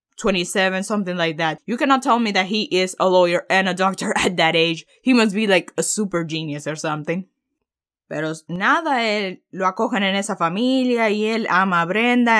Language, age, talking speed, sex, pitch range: Spanish, 20-39, 200 wpm, female, 180-225 Hz